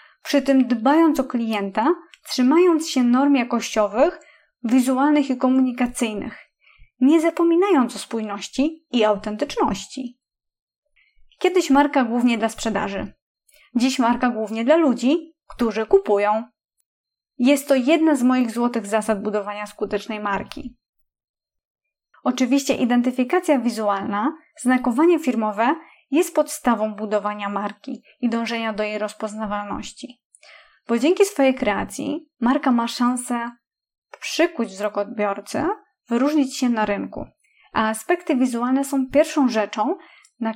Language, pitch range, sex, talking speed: Polish, 220-295 Hz, female, 110 wpm